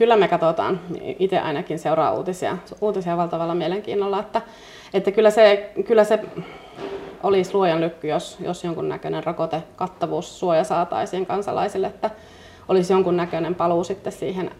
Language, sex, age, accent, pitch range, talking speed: Finnish, female, 30-49, native, 170-210 Hz, 130 wpm